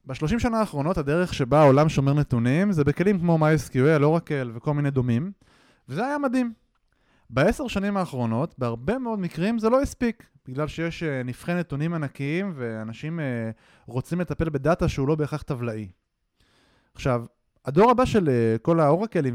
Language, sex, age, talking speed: Hebrew, male, 20-39, 155 wpm